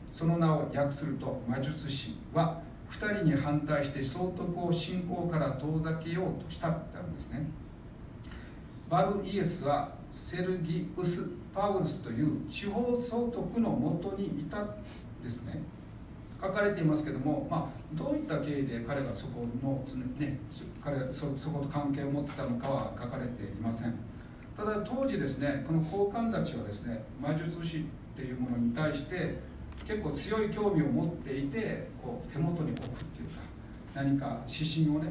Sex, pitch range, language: male, 130-175 Hz, Japanese